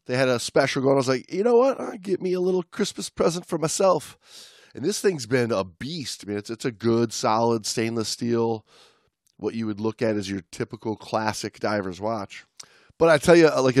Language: English